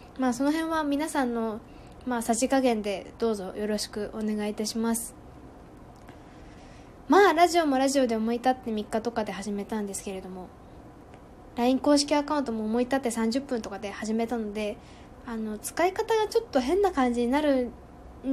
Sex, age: female, 20-39